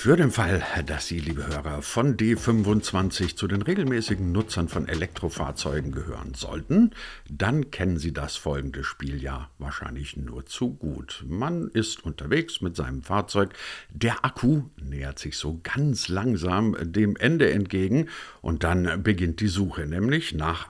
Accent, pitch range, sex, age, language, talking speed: German, 75-110 Hz, male, 60-79, German, 150 wpm